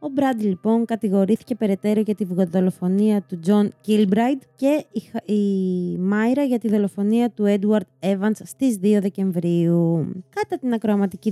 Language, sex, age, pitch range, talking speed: Greek, female, 20-39, 185-230 Hz, 140 wpm